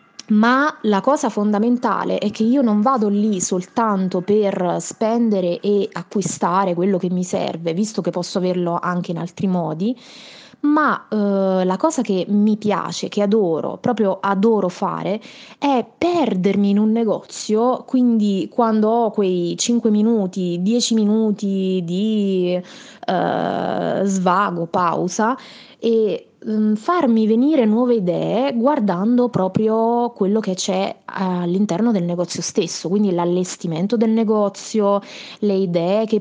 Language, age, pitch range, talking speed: Italian, 20-39, 185-225 Hz, 130 wpm